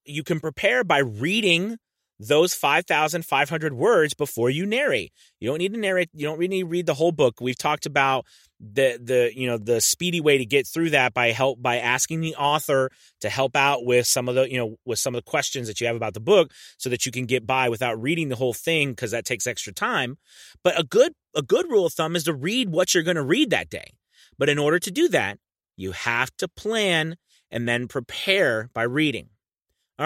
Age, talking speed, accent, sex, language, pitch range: 30-49, 230 wpm, American, male, English, 125-175 Hz